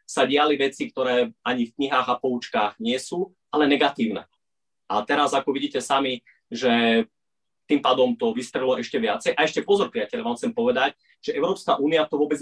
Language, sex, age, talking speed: Slovak, male, 30-49, 180 wpm